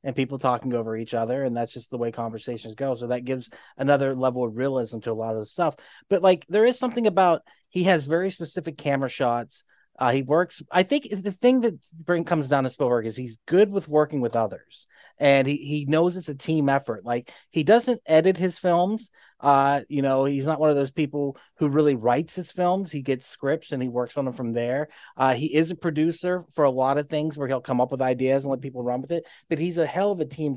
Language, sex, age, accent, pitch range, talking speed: English, male, 30-49, American, 125-165 Hz, 245 wpm